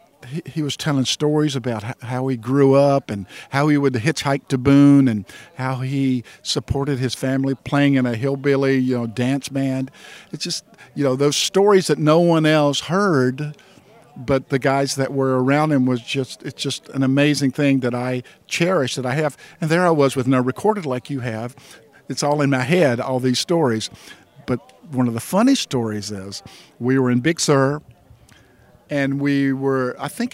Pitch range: 125-155 Hz